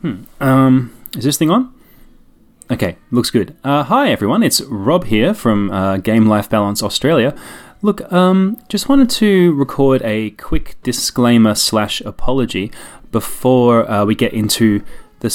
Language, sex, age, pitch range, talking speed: English, male, 30-49, 100-145 Hz, 150 wpm